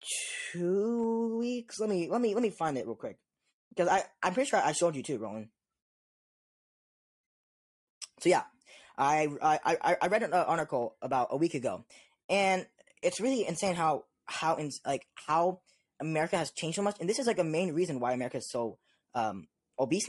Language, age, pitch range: English, 10-29, 145-205 Hz